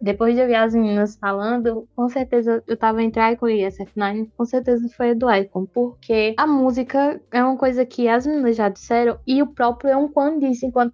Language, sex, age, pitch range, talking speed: Portuguese, female, 10-29, 215-255 Hz, 215 wpm